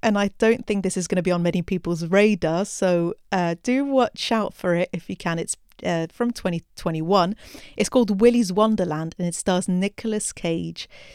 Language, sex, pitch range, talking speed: English, female, 170-210 Hz, 195 wpm